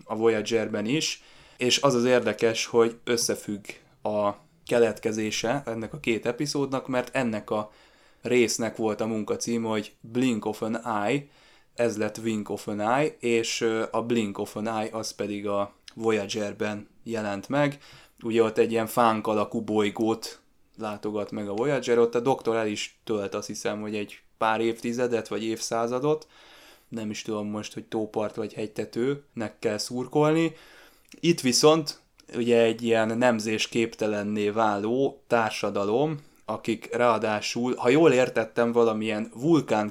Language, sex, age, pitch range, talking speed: Hungarian, male, 20-39, 105-120 Hz, 145 wpm